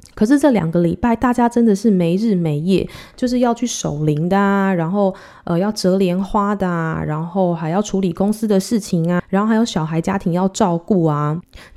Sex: female